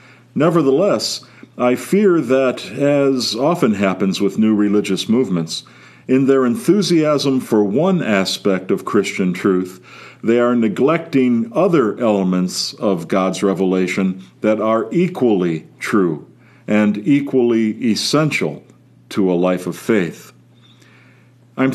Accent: American